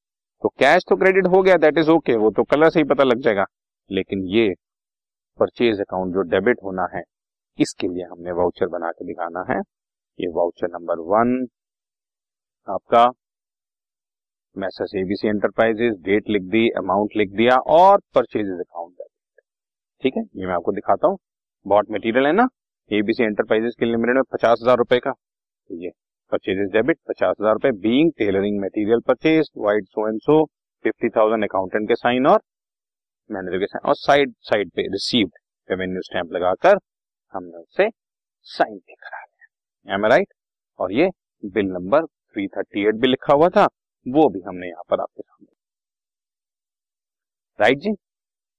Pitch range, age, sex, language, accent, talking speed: 100-155 Hz, 40-59, male, Hindi, native, 115 wpm